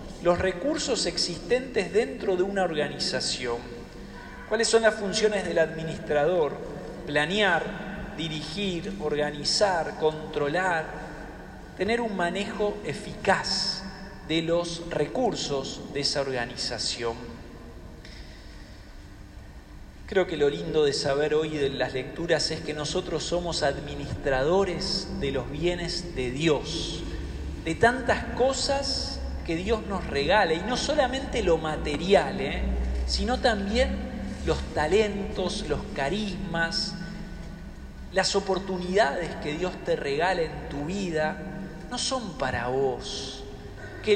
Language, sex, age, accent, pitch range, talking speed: English, male, 40-59, Argentinian, 155-210 Hz, 105 wpm